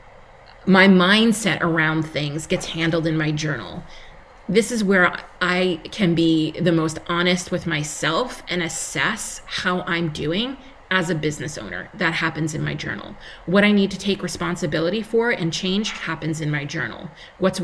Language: English